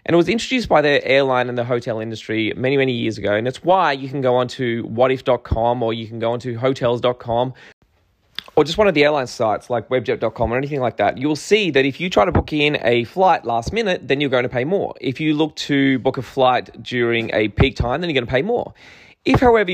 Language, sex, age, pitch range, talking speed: English, male, 20-39, 120-155 Hz, 245 wpm